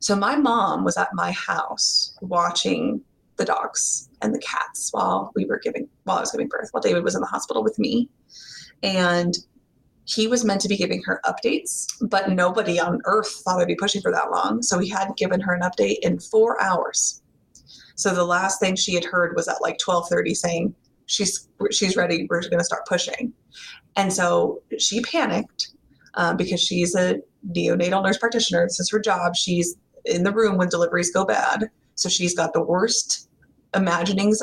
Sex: female